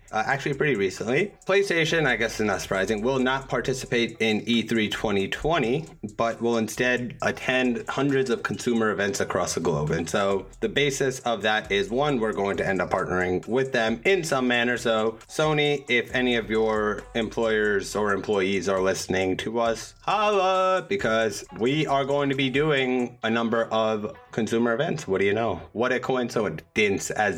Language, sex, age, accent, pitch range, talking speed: English, male, 30-49, American, 100-130 Hz, 175 wpm